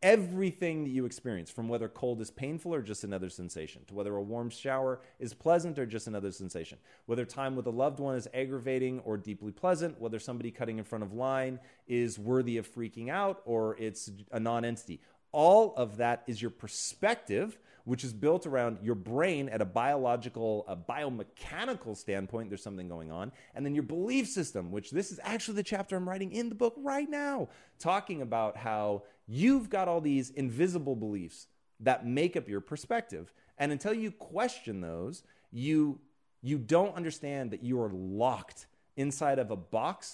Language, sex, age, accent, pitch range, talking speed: English, male, 30-49, American, 110-150 Hz, 180 wpm